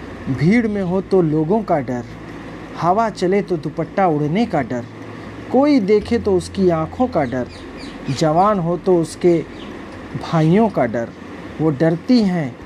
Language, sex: Hindi, male